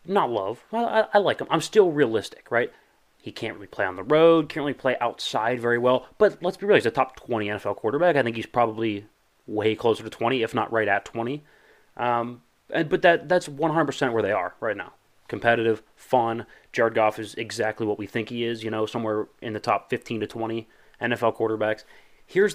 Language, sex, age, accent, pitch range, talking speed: English, male, 30-49, American, 110-155 Hz, 215 wpm